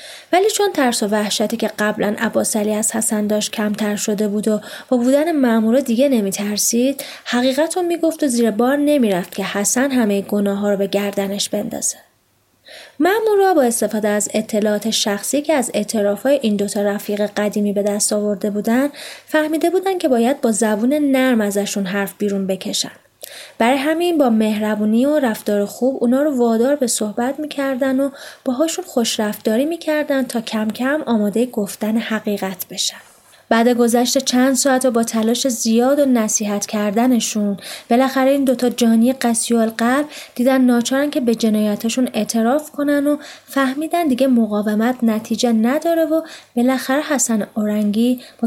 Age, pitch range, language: 20-39, 210-275 Hz, Persian